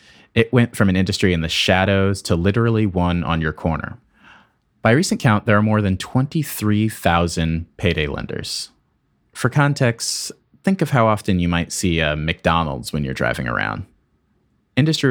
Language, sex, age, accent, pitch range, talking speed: English, male, 30-49, American, 80-110 Hz, 160 wpm